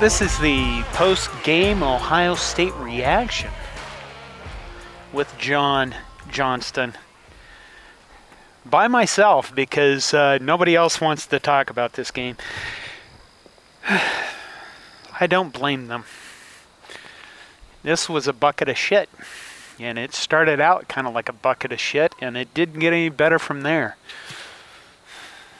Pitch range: 130-170 Hz